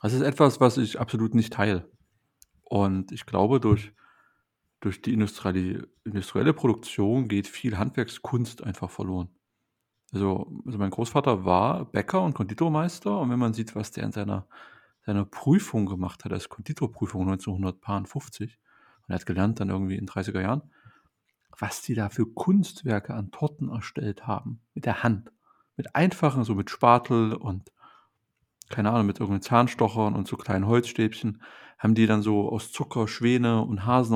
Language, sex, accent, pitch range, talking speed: German, male, German, 105-130 Hz, 160 wpm